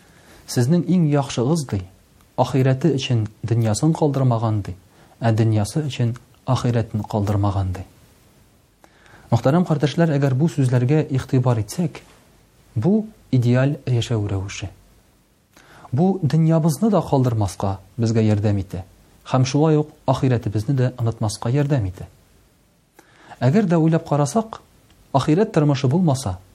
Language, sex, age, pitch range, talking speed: Russian, male, 40-59, 110-150 Hz, 85 wpm